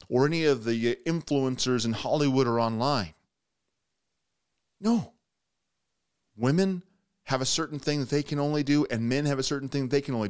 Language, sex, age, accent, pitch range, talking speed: English, male, 30-49, American, 125-155 Hz, 175 wpm